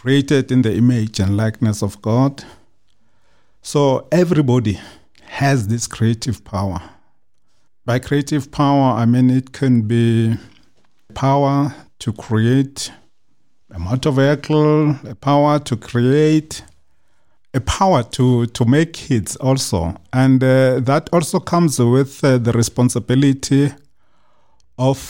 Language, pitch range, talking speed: English, 115-145 Hz, 115 wpm